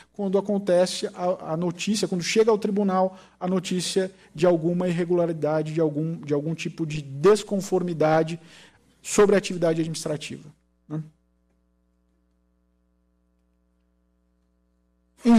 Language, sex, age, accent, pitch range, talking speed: Portuguese, male, 50-69, Brazilian, 145-205 Hz, 95 wpm